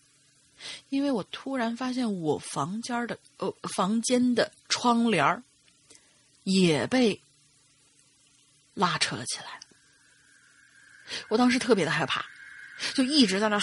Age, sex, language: 30-49, female, Chinese